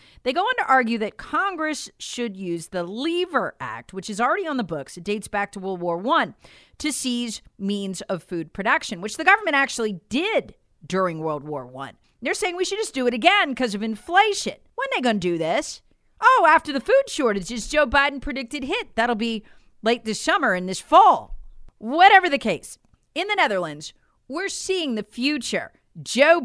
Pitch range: 205-315 Hz